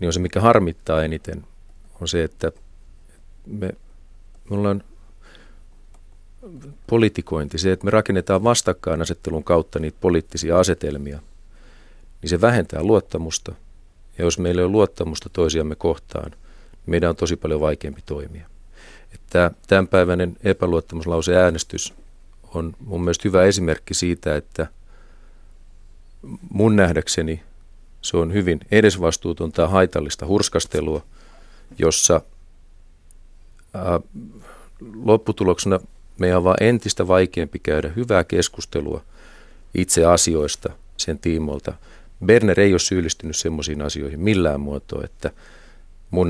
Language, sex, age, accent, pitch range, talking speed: Finnish, male, 40-59, native, 75-95 Hz, 110 wpm